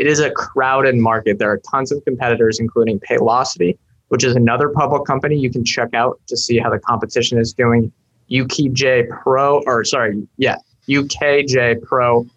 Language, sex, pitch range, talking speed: English, male, 115-135 Hz, 170 wpm